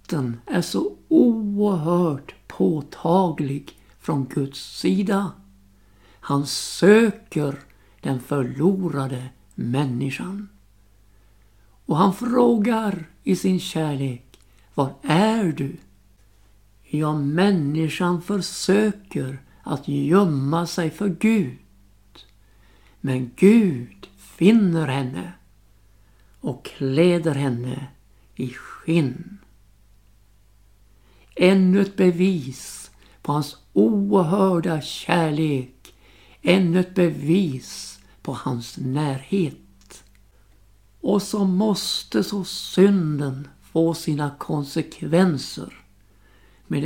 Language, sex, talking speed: Swedish, male, 75 wpm